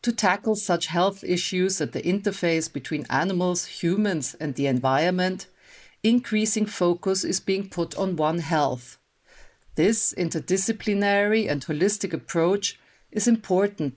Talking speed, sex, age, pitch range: 125 wpm, female, 50-69, 155-195 Hz